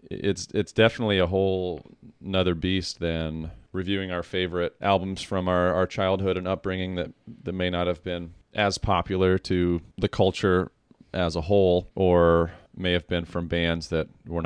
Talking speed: 165 wpm